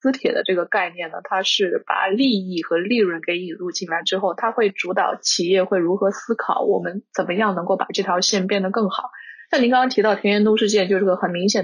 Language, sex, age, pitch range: Chinese, female, 20-39, 185-230 Hz